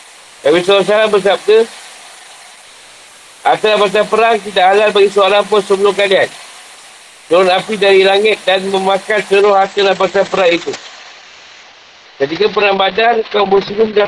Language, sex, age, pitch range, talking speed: Malay, male, 50-69, 185-210 Hz, 130 wpm